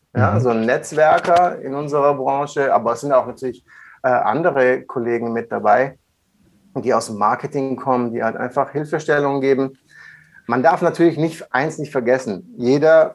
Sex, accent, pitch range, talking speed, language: male, German, 115-140 Hz, 160 wpm, German